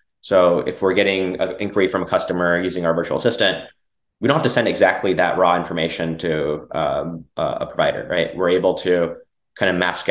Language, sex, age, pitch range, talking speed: English, male, 20-39, 85-95 Hz, 195 wpm